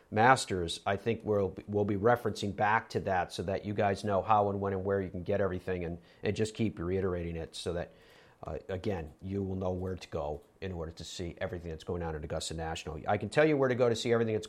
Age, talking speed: 40-59, 255 wpm